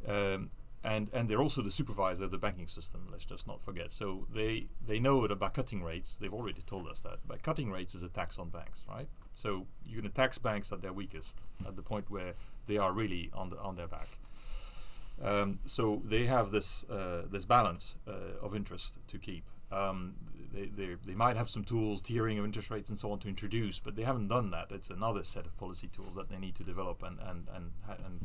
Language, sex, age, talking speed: English, male, 30-49, 225 wpm